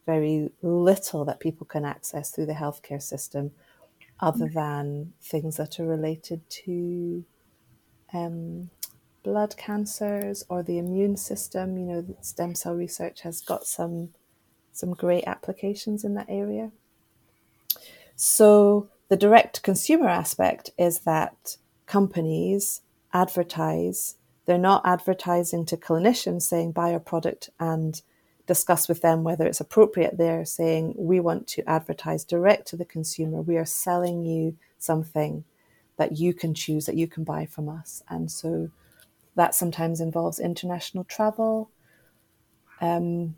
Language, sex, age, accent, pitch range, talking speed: English, female, 30-49, British, 160-190 Hz, 135 wpm